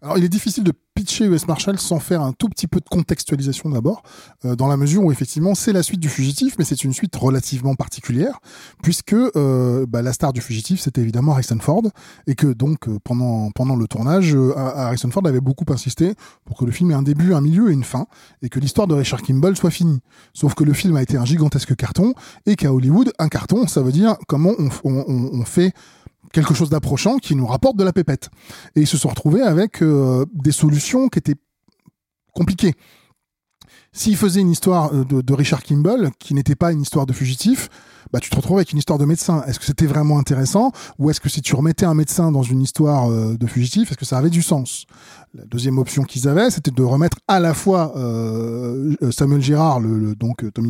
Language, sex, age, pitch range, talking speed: French, male, 20-39, 130-175 Hz, 220 wpm